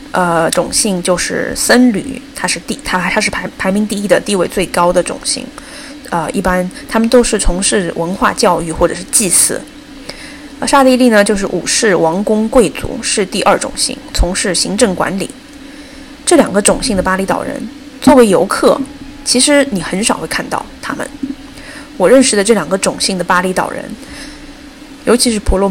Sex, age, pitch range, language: female, 20-39, 190-280 Hz, Chinese